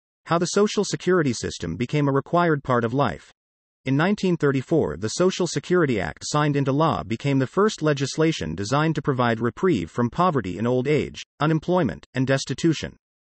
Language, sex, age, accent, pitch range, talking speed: English, male, 40-59, American, 115-160 Hz, 165 wpm